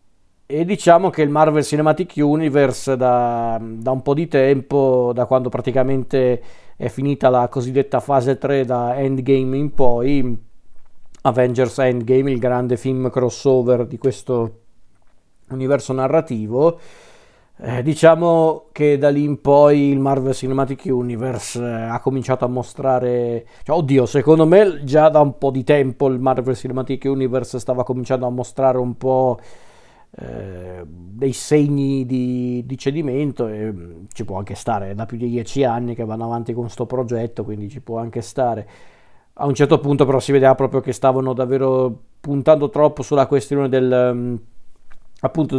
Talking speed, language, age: 150 wpm, Italian, 40-59